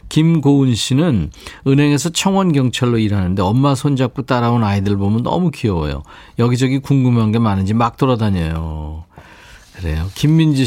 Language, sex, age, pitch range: Korean, male, 40-59, 100-145 Hz